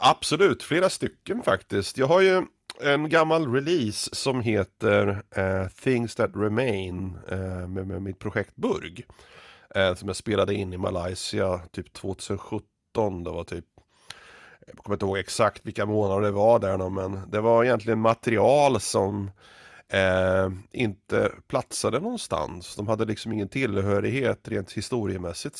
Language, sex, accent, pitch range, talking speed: Swedish, male, native, 95-120 Hz, 145 wpm